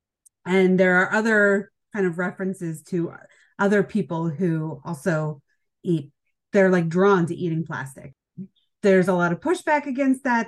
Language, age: English, 30-49